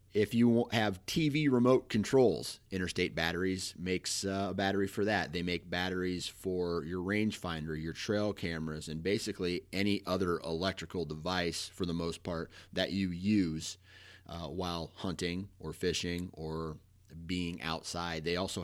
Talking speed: 150 wpm